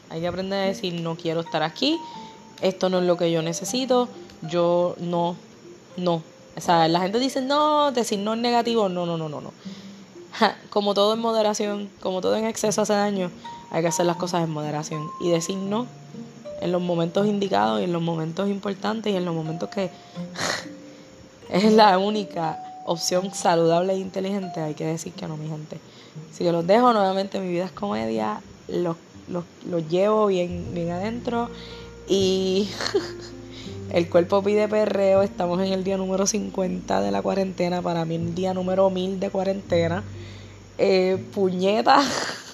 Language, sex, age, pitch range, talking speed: Spanish, female, 20-39, 170-210 Hz, 175 wpm